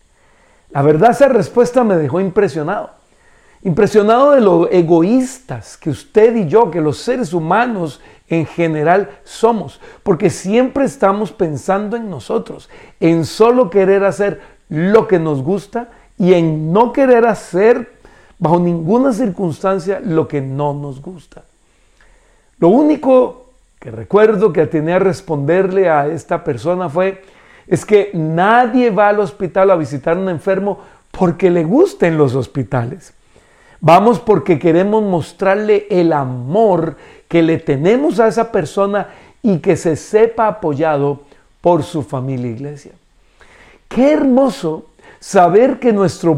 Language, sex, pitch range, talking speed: Spanish, male, 160-225 Hz, 130 wpm